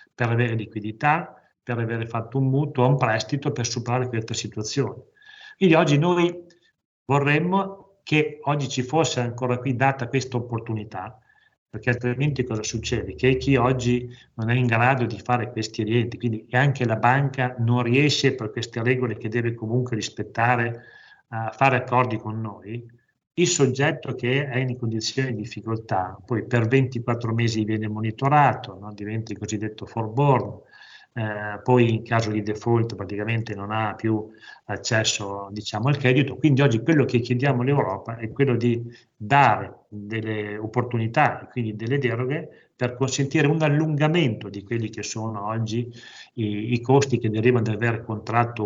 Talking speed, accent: 155 wpm, native